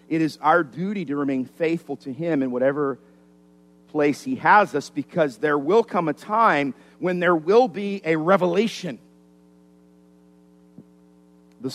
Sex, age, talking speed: male, 50-69, 145 wpm